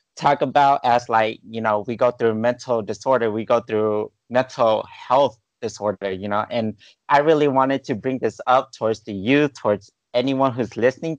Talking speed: 180 wpm